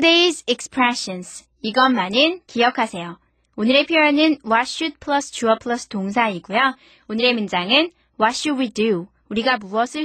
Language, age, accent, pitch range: Korean, 20-39, native, 215-300 Hz